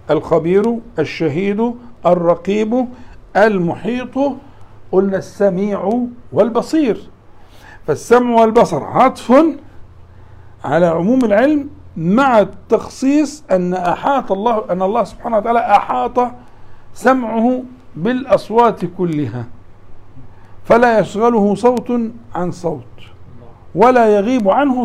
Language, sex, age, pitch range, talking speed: Arabic, male, 60-79, 165-230 Hz, 80 wpm